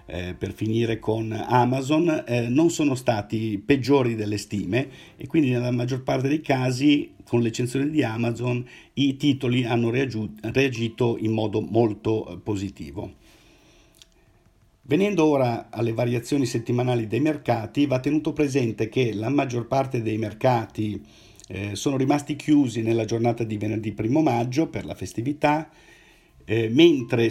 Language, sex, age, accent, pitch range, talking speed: Italian, male, 50-69, native, 110-140 Hz, 135 wpm